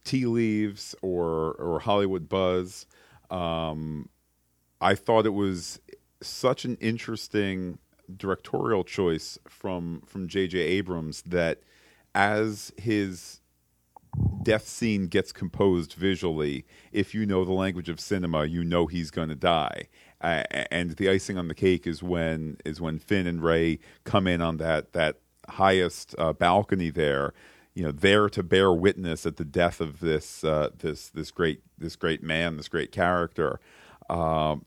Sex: male